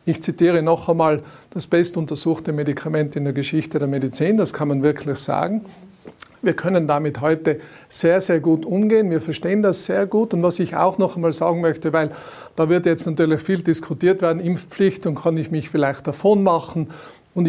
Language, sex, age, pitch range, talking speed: German, male, 50-69, 155-185 Hz, 190 wpm